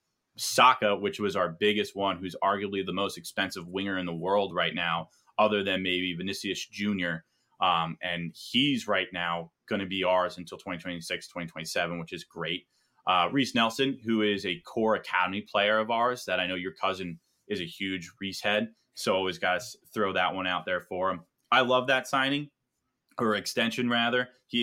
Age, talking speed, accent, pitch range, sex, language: 20-39, 190 wpm, American, 95-120 Hz, male, English